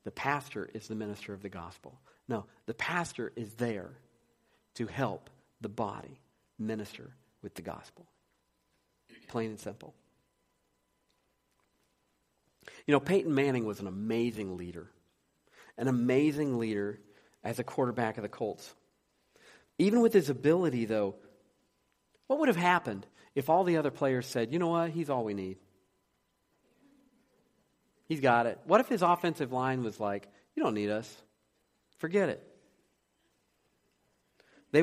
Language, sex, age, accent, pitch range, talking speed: English, male, 50-69, American, 100-145 Hz, 140 wpm